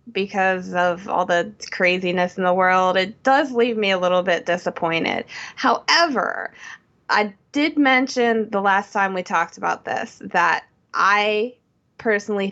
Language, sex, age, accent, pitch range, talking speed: English, female, 20-39, American, 180-225 Hz, 145 wpm